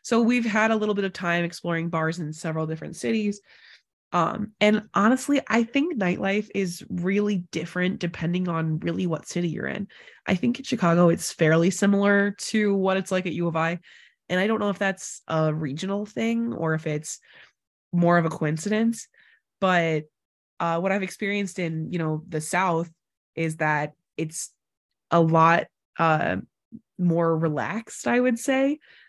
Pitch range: 160-200 Hz